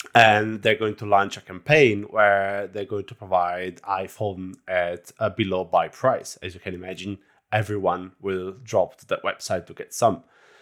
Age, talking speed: 30-49, 175 wpm